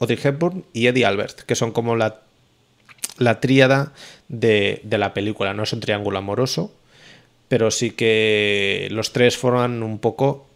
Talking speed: 160 wpm